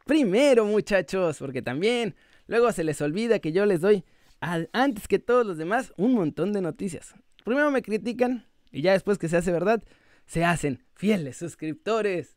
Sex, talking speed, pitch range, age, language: male, 170 wpm, 165-220 Hz, 20-39, Spanish